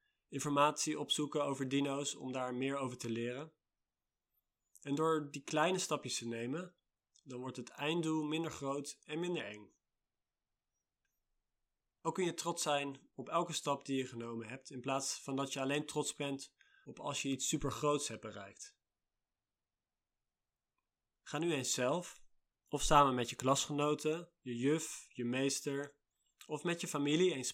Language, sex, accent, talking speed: Dutch, male, Dutch, 155 wpm